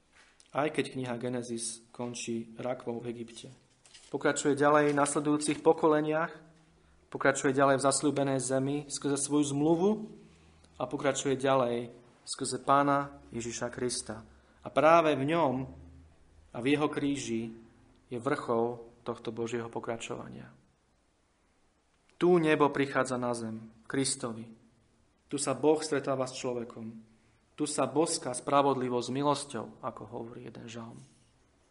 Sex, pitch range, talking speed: male, 120-140 Hz, 115 wpm